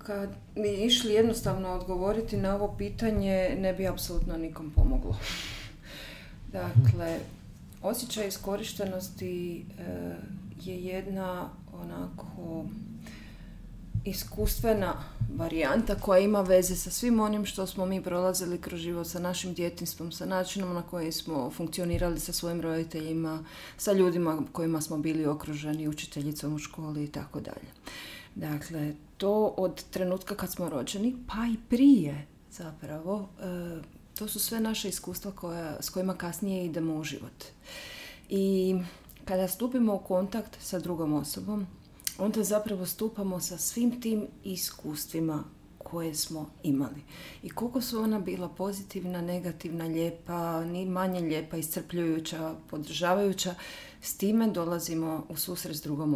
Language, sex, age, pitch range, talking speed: Croatian, female, 30-49, 160-195 Hz, 125 wpm